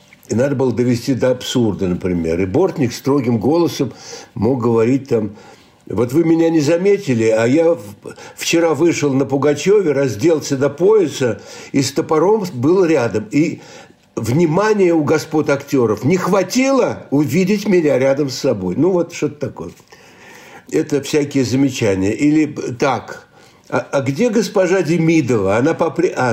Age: 60-79